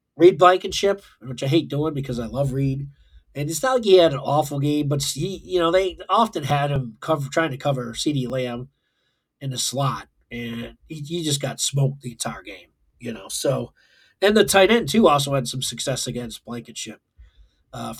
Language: English